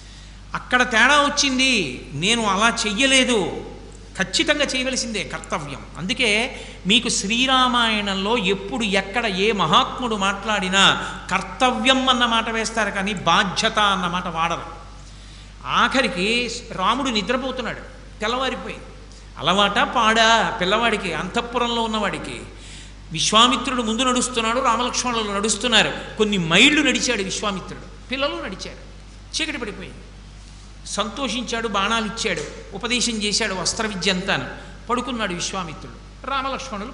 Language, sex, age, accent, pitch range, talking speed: Telugu, male, 50-69, native, 195-250 Hz, 95 wpm